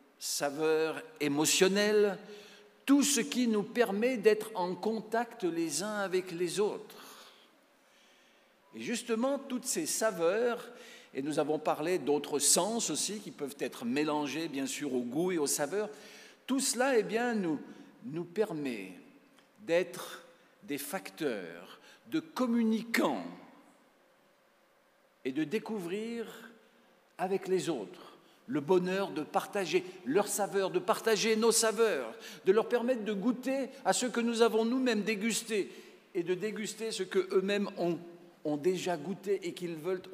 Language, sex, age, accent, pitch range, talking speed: French, male, 50-69, French, 175-235 Hz, 135 wpm